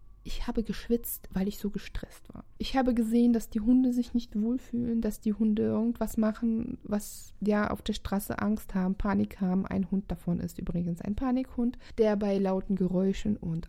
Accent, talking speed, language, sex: German, 190 wpm, German, female